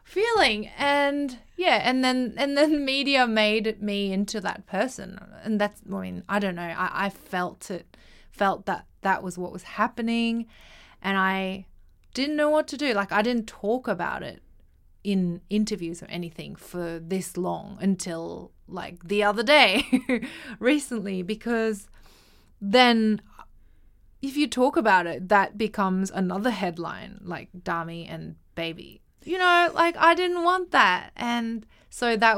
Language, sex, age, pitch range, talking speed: English, female, 20-39, 185-240 Hz, 155 wpm